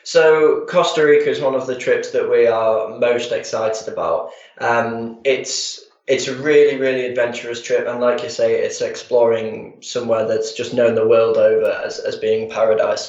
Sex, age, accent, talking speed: male, 10-29, British, 180 wpm